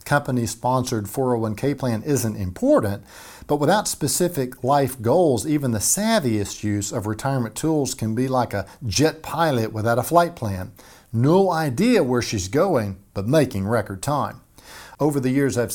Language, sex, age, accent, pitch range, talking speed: English, male, 50-69, American, 105-135 Hz, 150 wpm